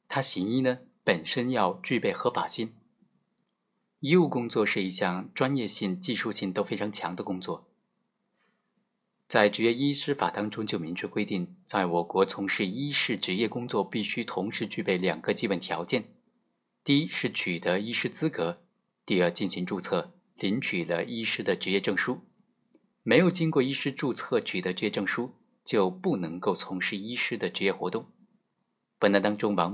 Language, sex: Chinese, male